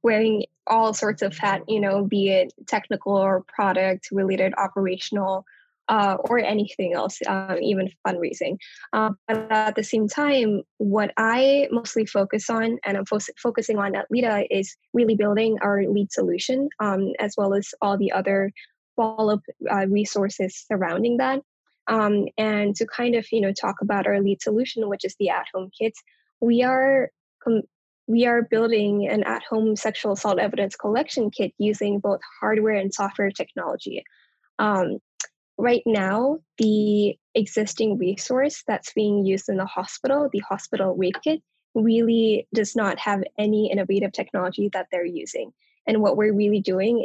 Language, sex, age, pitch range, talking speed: English, female, 10-29, 200-230 Hz, 150 wpm